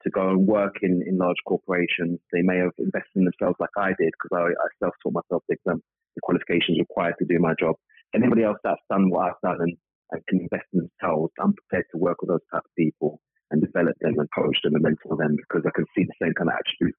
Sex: male